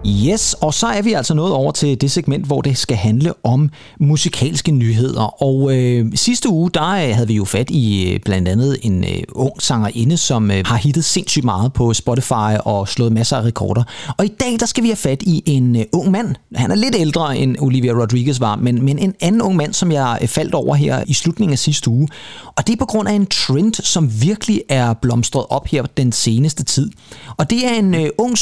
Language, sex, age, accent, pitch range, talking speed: Danish, male, 30-49, native, 130-185 Hz, 215 wpm